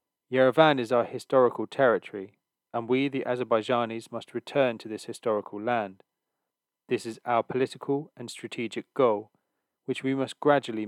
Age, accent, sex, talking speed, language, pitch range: 30-49, British, male, 145 wpm, English, 110-130 Hz